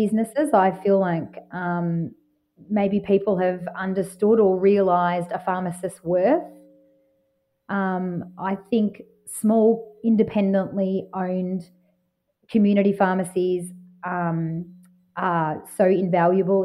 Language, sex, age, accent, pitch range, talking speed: English, female, 30-49, Australian, 175-195 Hz, 90 wpm